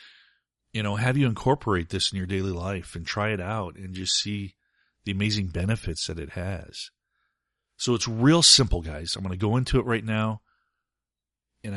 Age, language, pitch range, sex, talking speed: 40-59, English, 95-110 Hz, male, 190 wpm